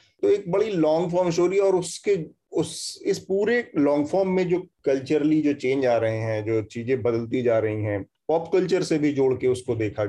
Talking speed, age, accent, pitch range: 210 wpm, 30-49, native, 120-160 Hz